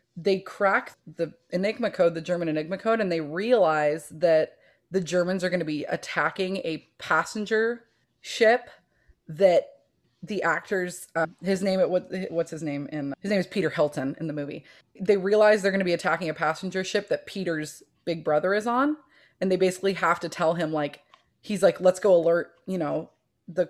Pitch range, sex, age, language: 155-185 Hz, female, 20-39, English